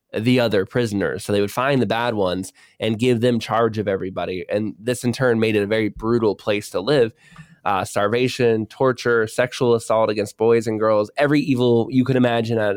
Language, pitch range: English, 110-125 Hz